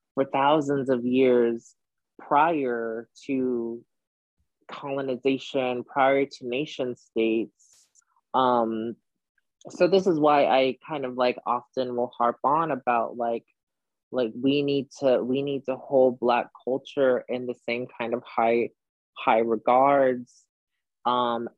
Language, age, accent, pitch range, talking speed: English, 20-39, American, 115-130 Hz, 125 wpm